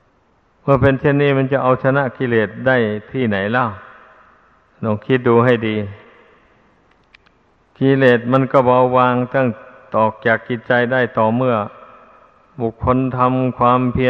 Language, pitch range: Thai, 115-135 Hz